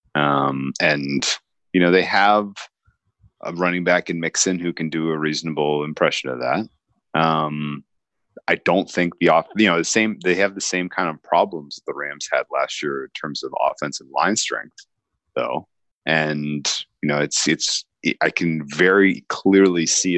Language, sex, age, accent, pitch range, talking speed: English, male, 30-49, American, 75-90 Hz, 170 wpm